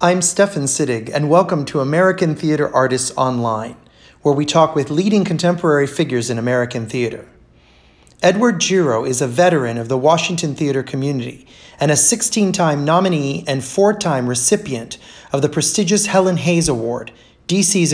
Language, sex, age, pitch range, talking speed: English, male, 30-49, 135-185 Hz, 145 wpm